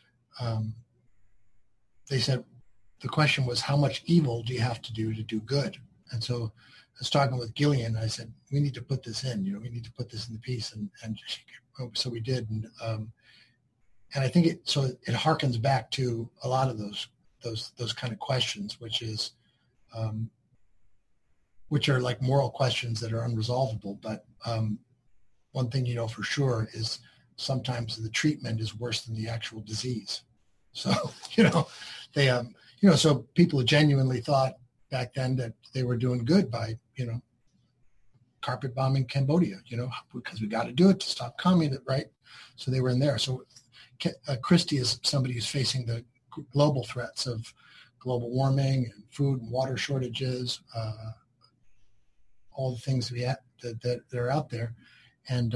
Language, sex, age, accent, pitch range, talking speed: English, male, 40-59, American, 115-135 Hz, 180 wpm